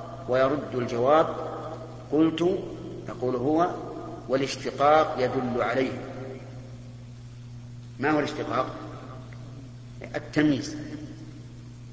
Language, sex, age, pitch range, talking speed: Arabic, male, 50-69, 120-150 Hz, 60 wpm